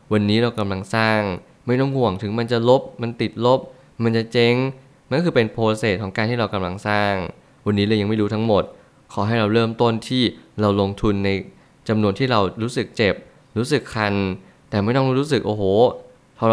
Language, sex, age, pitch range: Thai, male, 20-39, 105-120 Hz